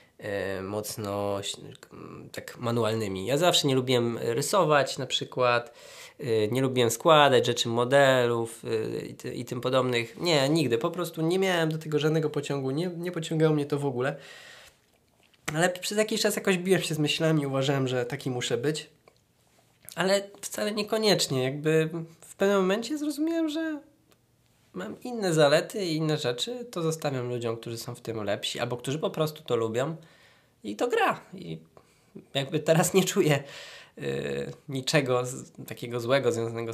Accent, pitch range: native, 115-165 Hz